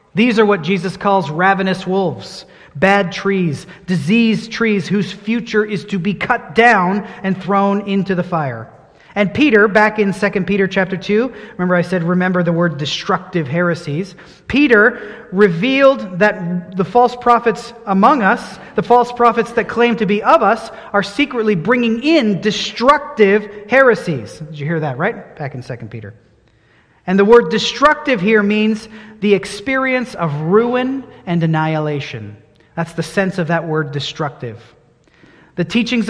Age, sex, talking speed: 30-49, male, 155 wpm